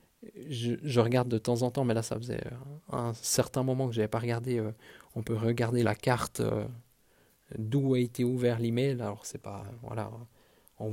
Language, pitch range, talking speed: French, 115-130 Hz, 200 wpm